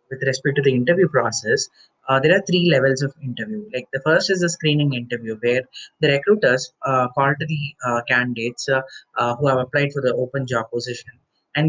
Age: 30-49